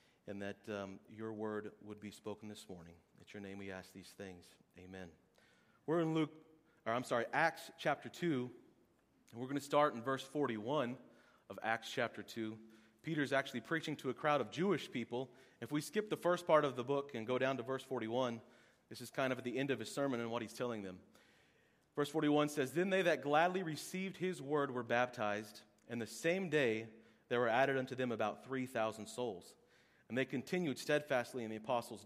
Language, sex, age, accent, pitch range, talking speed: English, male, 30-49, American, 110-135 Hz, 205 wpm